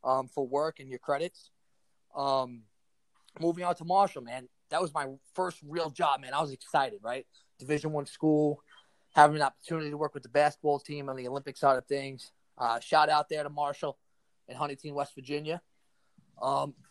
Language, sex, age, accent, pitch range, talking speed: English, male, 30-49, American, 140-170 Hz, 185 wpm